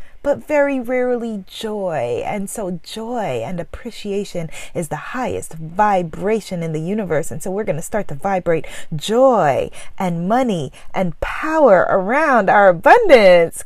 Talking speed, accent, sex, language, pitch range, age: 135 wpm, American, female, English, 180-285 Hz, 30-49